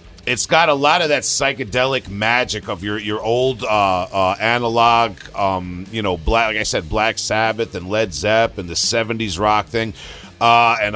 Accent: American